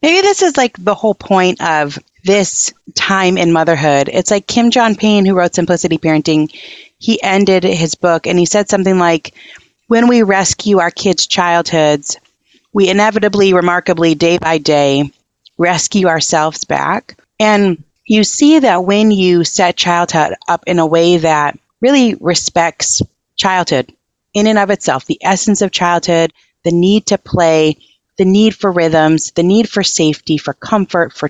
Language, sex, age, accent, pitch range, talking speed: English, female, 30-49, American, 165-215 Hz, 160 wpm